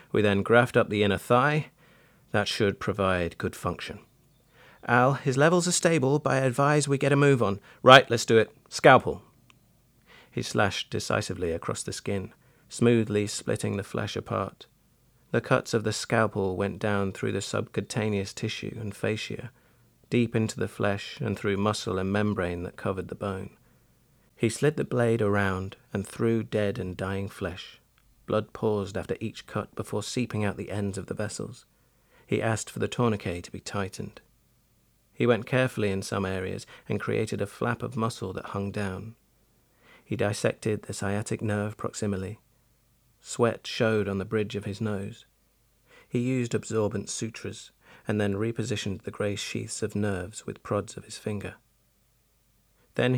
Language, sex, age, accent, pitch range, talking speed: English, male, 40-59, British, 100-120 Hz, 165 wpm